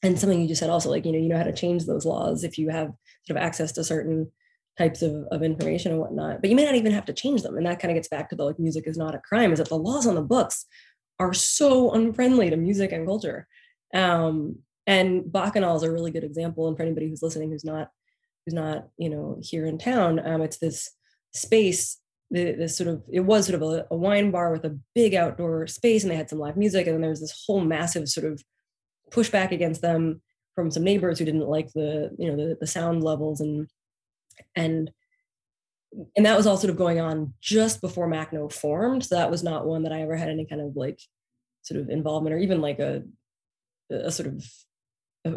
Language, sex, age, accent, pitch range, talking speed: English, female, 20-39, American, 155-180 Hz, 235 wpm